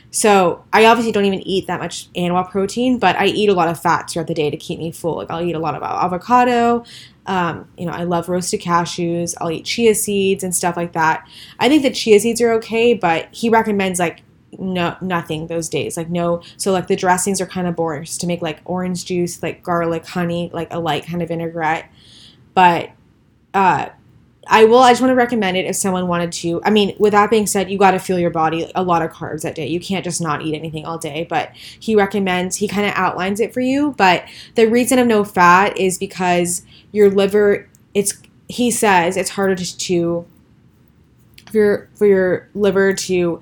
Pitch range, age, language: 170-200 Hz, 20-39, English